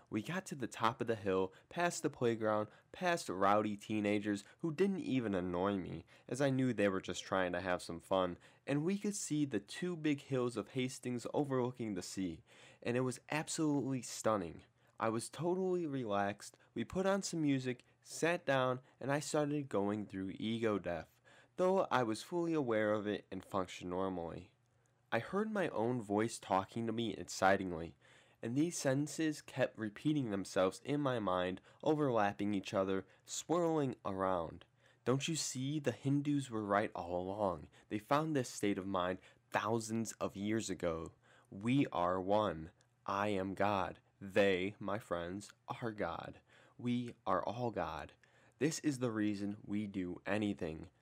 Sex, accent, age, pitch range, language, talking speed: male, American, 20-39, 95-135 Hz, English, 165 wpm